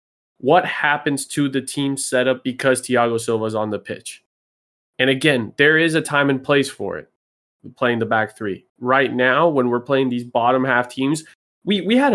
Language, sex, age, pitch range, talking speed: English, male, 20-39, 115-135 Hz, 190 wpm